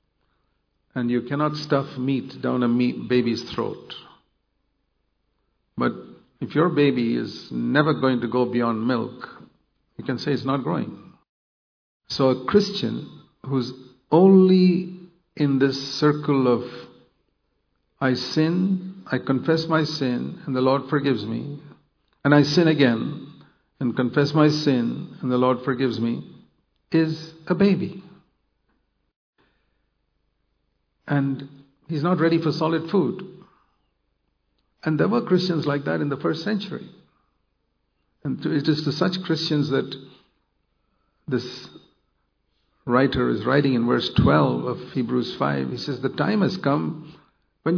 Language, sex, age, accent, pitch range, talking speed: English, male, 50-69, Indian, 120-170 Hz, 130 wpm